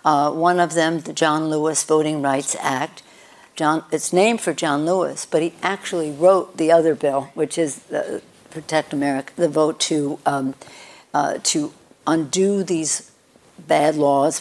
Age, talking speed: 60-79, 160 wpm